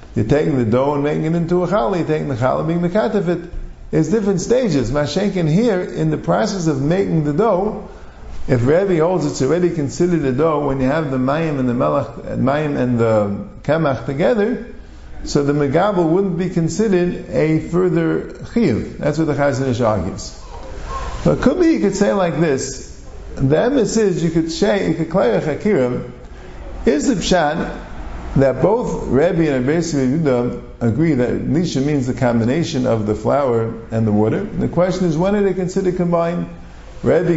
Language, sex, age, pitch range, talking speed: English, male, 50-69, 130-185 Hz, 170 wpm